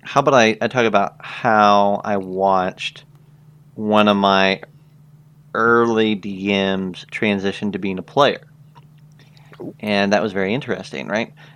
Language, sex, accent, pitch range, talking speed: English, male, American, 100-145 Hz, 130 wpm